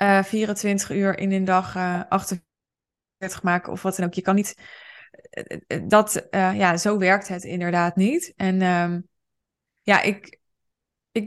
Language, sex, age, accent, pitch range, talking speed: Dutch, female, 20-39, Dutch, 185-220 Hz, 145 wpm